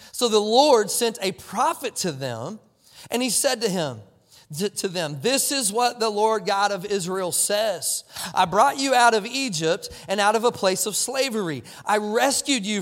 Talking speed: 185 wpm